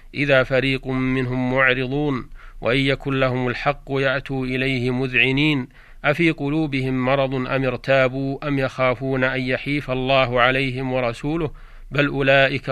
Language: Arabic